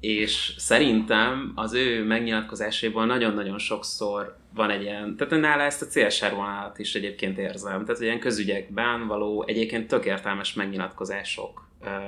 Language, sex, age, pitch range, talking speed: Hungarian, male, 20-39, 95-115 Hz, 125 wpm